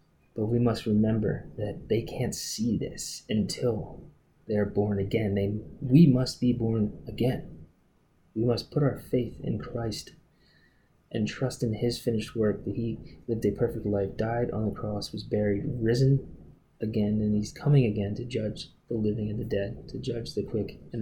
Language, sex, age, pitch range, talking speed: English, male, 20-39, 105-120 Hz, 175 wpm